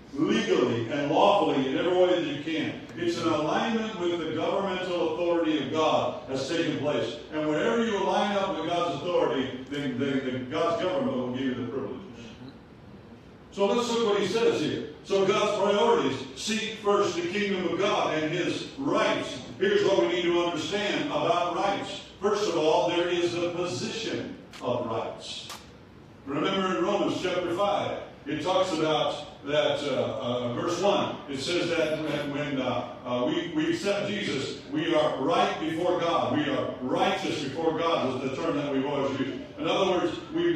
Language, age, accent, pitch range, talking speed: English, 50-69, American, 155-195 Hz, 180 wpm